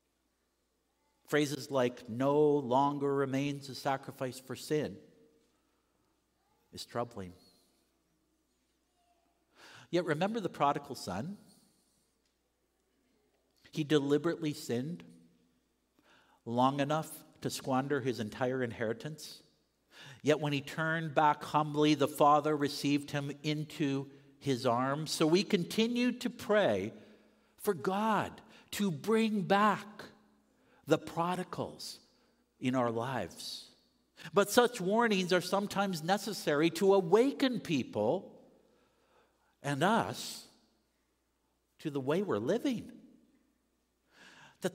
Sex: male